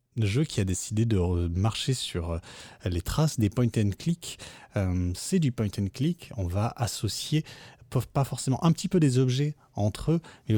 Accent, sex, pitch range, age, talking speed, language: French, male, 95-120 Hz, 30-49, 185 wpm, French